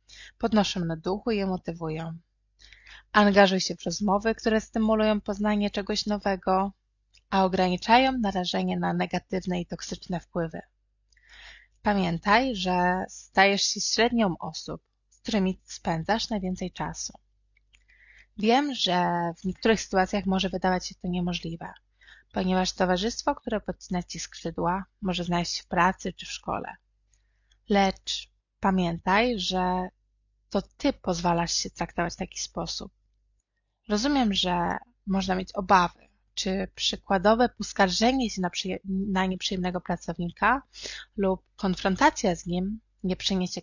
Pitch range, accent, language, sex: 175-210 Hz, native, Polish, female